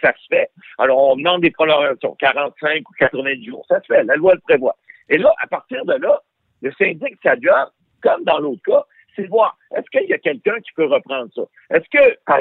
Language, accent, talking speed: French, French, 225 wpm